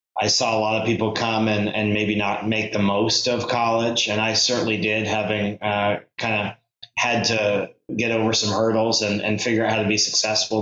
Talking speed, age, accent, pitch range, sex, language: 215 wpm, 30-49, American, 105-120 Hz, male, English